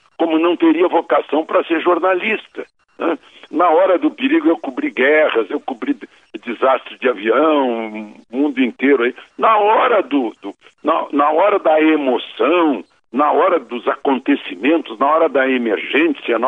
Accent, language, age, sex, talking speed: Brazilian, Portuguese, 60-79, male, 130 wpm